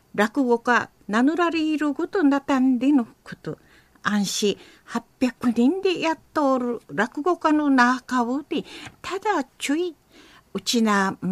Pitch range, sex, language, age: 230-310 Hz, female, Japanese, 50-69